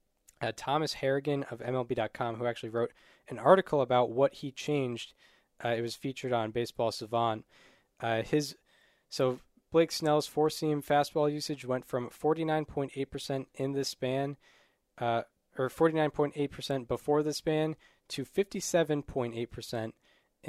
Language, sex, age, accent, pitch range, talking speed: English, male, 10-29, American, 120-155 Hz, 130 wpm